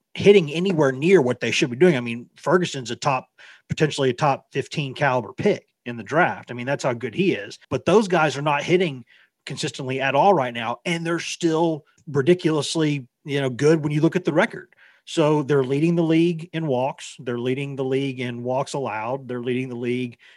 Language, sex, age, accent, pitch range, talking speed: English, male, 40-59, American, 125-160 Hz, 210 wpm